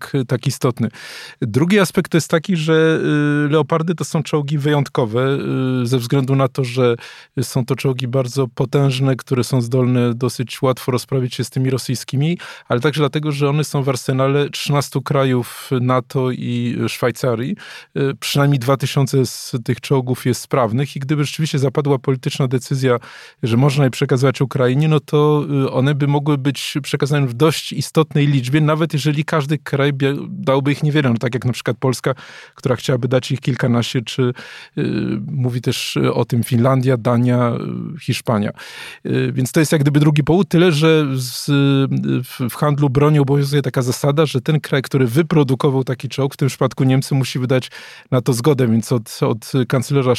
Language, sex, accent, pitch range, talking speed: Polish, male, native, 130-150 Hz, 165 wpm